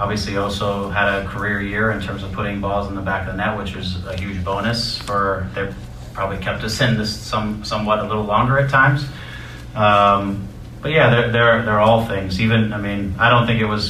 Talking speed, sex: 225 wpm, male